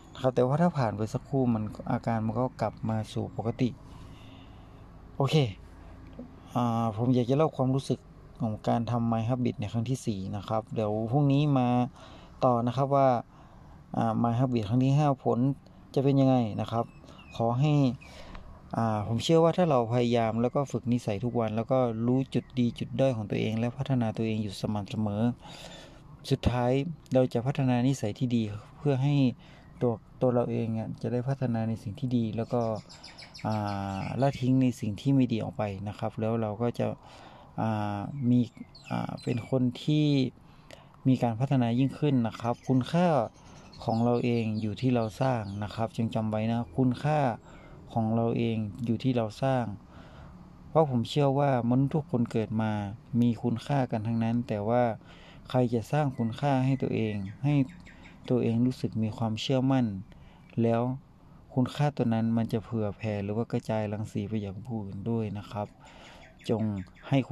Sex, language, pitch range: male, Thai, 110-130 Hz